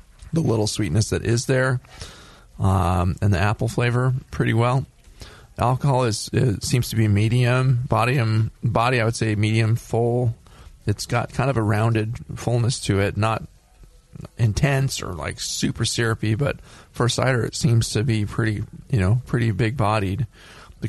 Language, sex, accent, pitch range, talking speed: English, male, American, 100-125 Hz, 165 wpm